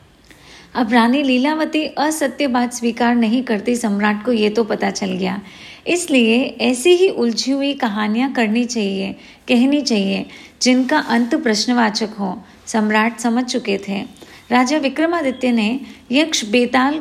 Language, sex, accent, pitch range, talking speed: Hindi, female, native, 220-275 Hz, 135 wpm